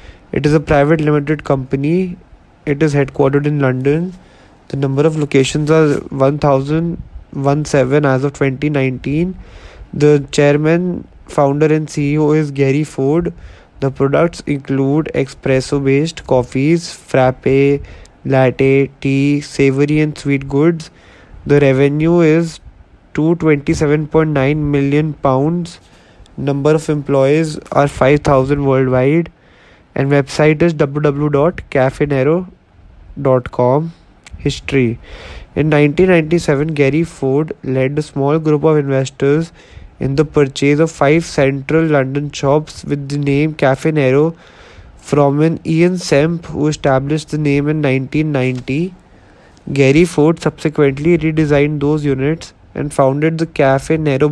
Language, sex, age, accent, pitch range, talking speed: English, male, 20-39, Indian, 135-155 Hz, 110 wpm